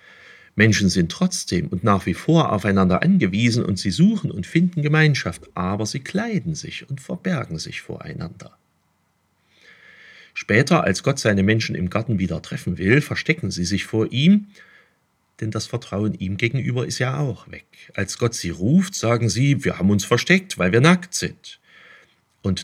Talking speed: 165 wpm